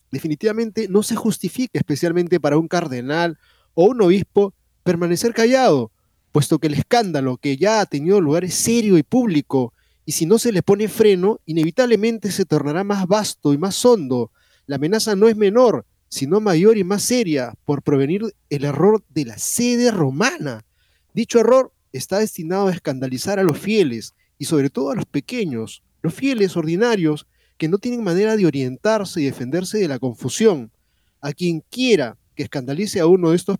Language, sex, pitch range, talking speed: Spanish, male, 135-200 Hz, 175 wpm